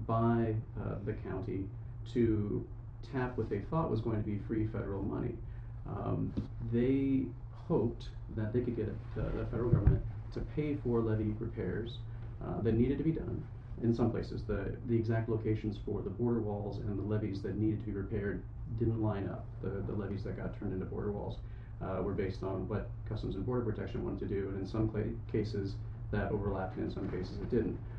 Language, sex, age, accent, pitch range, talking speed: English, male, 30-49, American, 105-115 Hz, 200 wpm